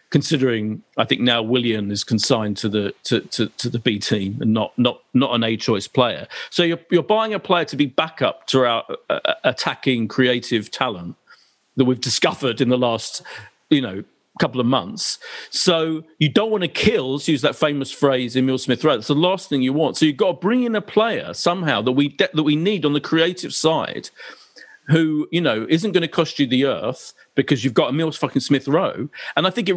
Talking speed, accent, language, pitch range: 220 wpm, British, English, 125-165 Hz